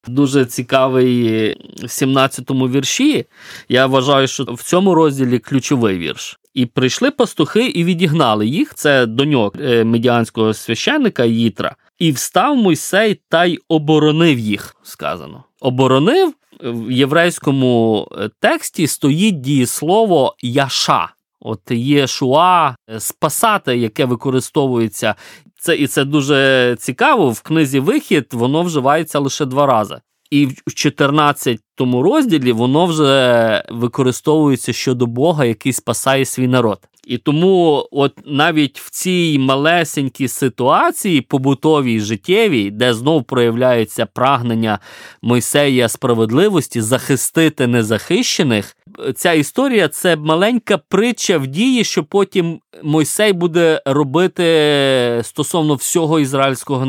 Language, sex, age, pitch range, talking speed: Ukrainian, male, 20-39, 125-160 Hz, 110 wpm